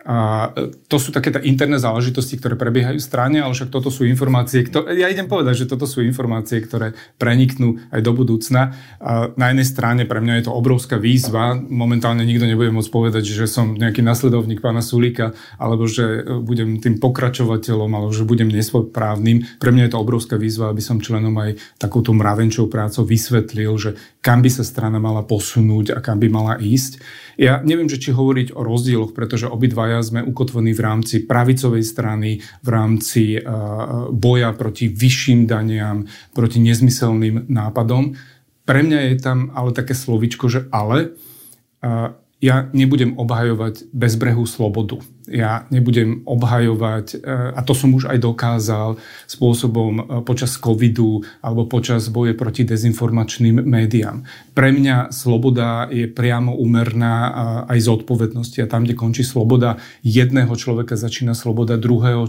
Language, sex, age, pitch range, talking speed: Slovak, male, 30-49, 115-125 Hz, 150 wpm